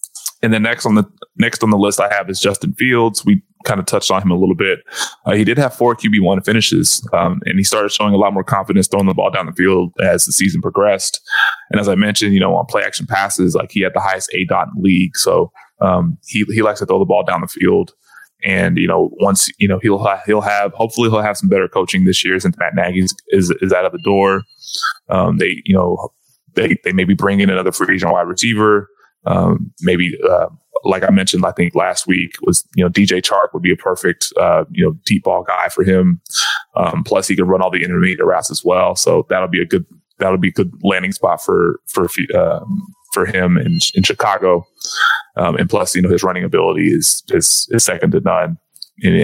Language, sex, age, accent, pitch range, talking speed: English, male, 20-39, American, 95-115 Hz, 240 wpm